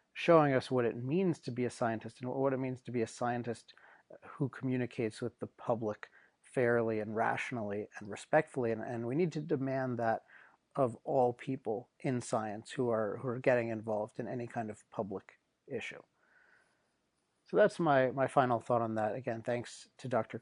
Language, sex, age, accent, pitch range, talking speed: English, male, 40-59, American, 115-135 Hz, 185 wpm